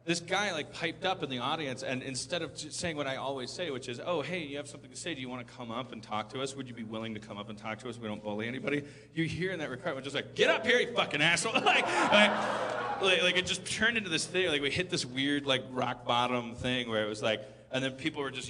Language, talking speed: English, 290 wpm